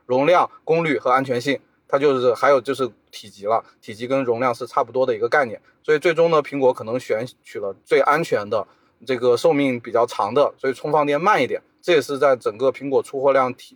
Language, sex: Chinese, male